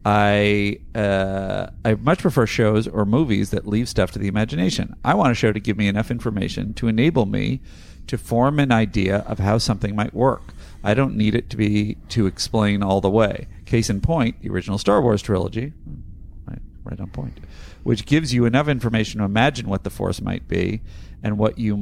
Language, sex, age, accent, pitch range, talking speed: English, male, 40-59, American, 95-115 Hz, 200 wpm